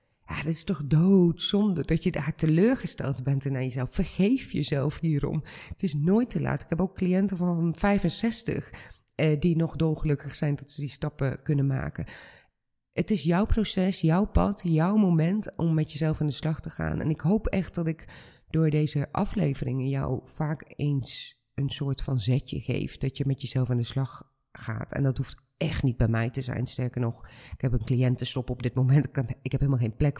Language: Dutch